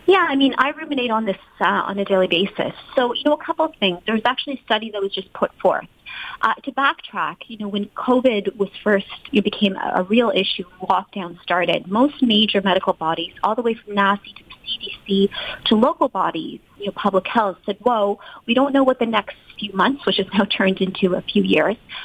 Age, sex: 30-49, female